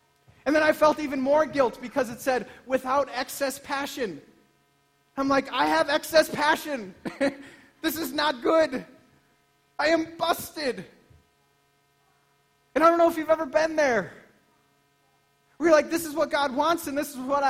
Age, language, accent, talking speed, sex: 40-59, English, American, 160 wpm, male